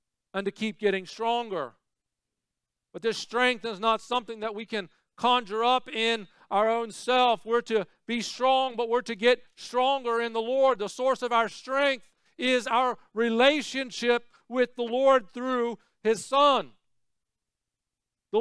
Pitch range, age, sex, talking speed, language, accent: 200-250 Hz, 50-69, male, 155 wpm, English, American